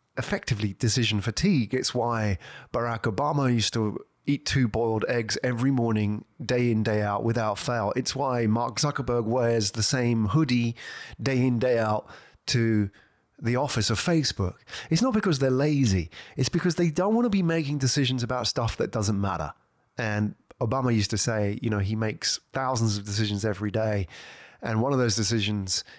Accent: British